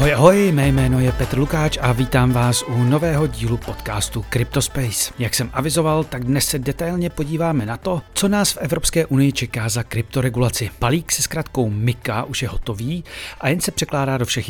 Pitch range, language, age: 120-160 Hz, Czech, 40-59